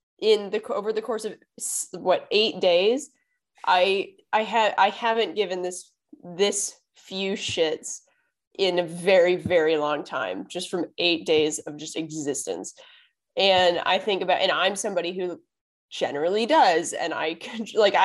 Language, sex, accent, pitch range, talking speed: English, female, American, 170-215 Hz, 150 wpm